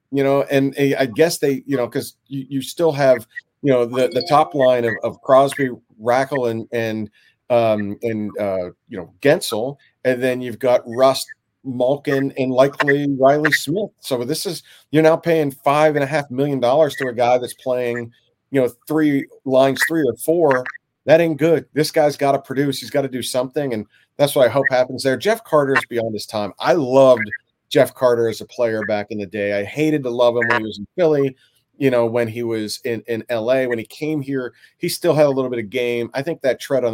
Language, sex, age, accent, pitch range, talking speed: English, male, 40-59, American, 120-140 Hz, 215 wpm